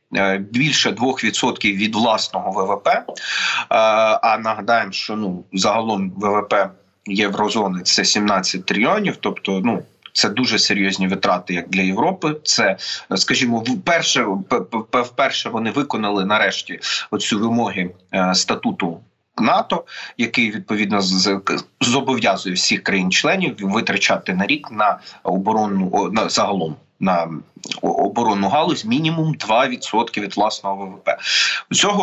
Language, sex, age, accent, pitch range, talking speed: Ukrainian, male, 30-49, native, 95-130 Hz, 105 wpm